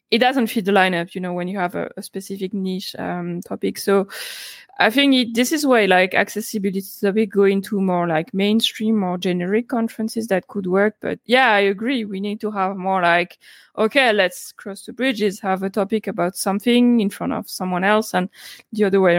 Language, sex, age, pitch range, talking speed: English, female, 20-39, 190-230 Hz, 205 wpm